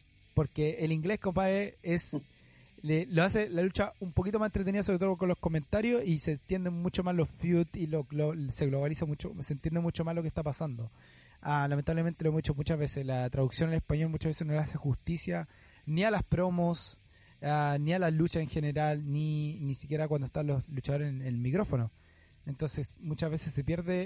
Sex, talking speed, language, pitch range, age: male, 205 wpm, Spanish, 130-160 Hz, 20-39